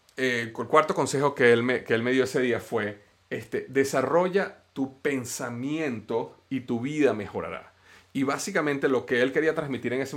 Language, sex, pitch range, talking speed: Spanish, male, 120-155 Hz, 185 wpm